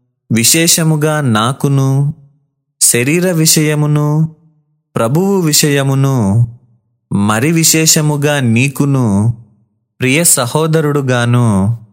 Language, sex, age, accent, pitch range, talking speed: Telugu, male, 30-49, native, 115-150 Hz, 55 wpm